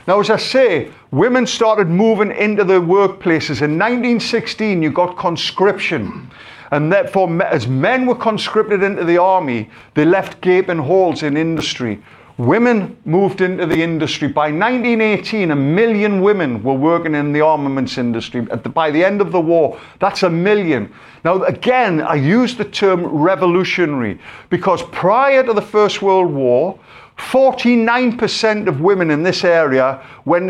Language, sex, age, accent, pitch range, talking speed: English, male, 50-69, British, 150-210 Hz, 150 wpm